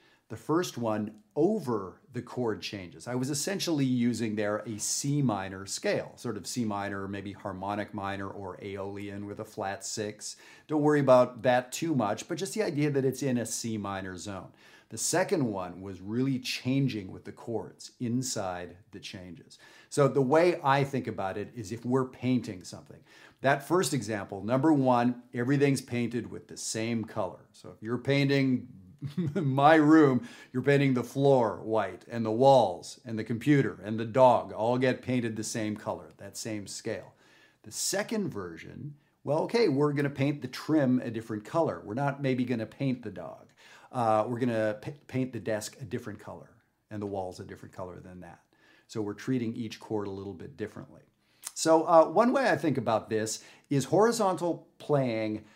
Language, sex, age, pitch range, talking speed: English, male, 40-59, 105-140 Hz, 185 wpm